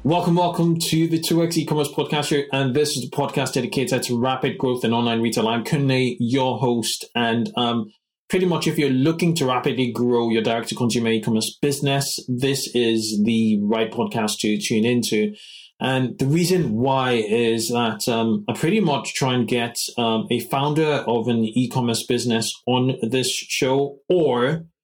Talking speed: 170 wpm